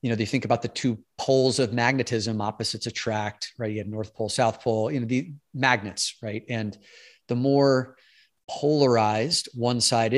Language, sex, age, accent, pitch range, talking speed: English, male, 30-49, American, 110-130 Hz, 175 wpm